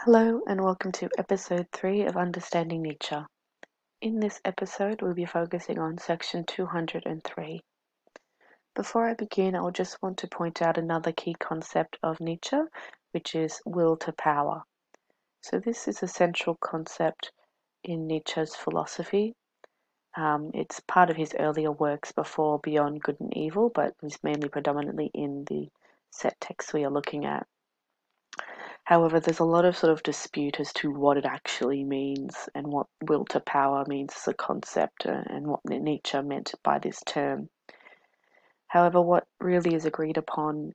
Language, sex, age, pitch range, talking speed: English, female, 30-49, 145-175 Hz, 155 wpm